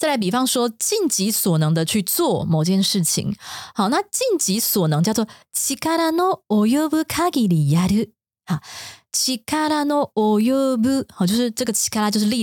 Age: 20-39